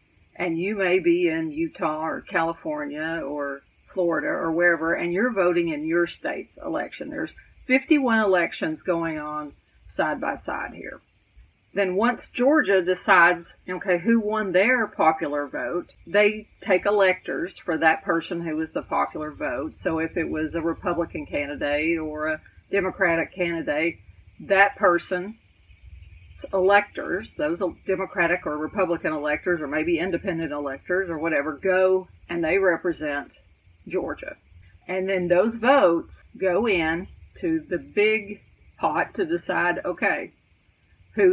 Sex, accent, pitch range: female, American, 160-200 Hz